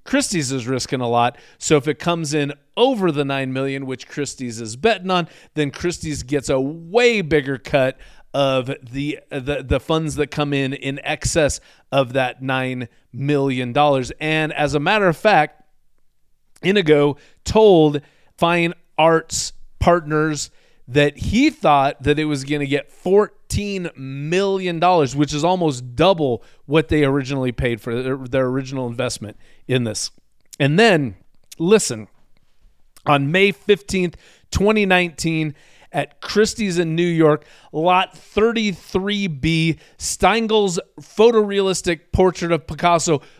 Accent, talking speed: American, 135 wpm